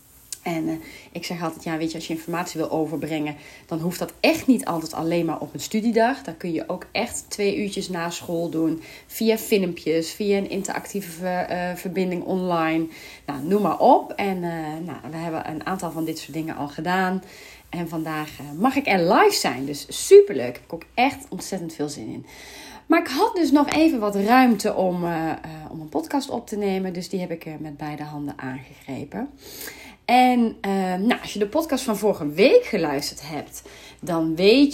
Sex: female